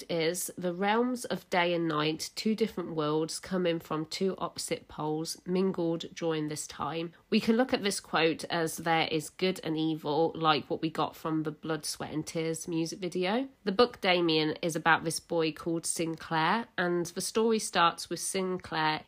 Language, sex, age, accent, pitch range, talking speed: English, female, 40-59, British, 160-185 Hz, 180 wpm